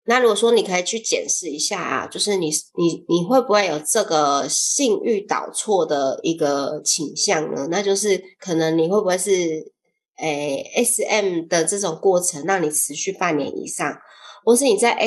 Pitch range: 160-210 Hz